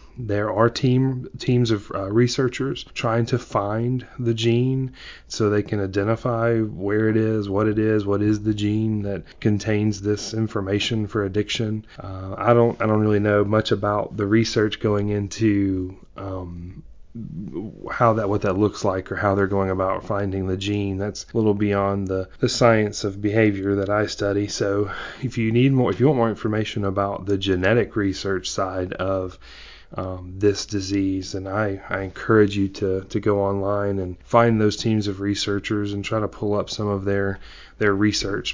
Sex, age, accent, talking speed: male, 30-49, American, 180 wpm